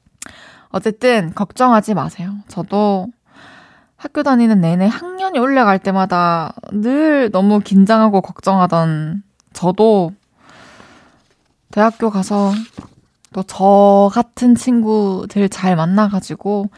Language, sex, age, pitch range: Korean, female, 20-39, 175-225 Hz